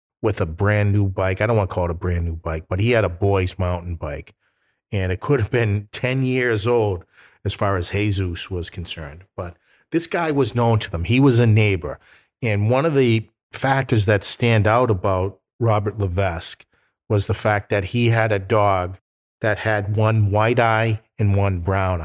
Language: English